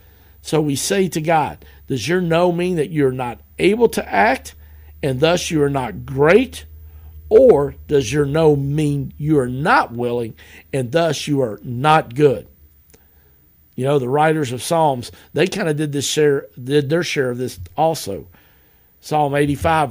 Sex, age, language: male, 50-69, English